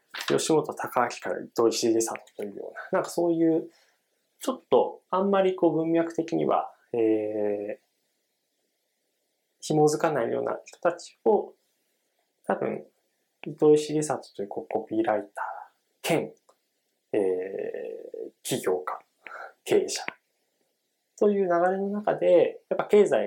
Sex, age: male, 20-39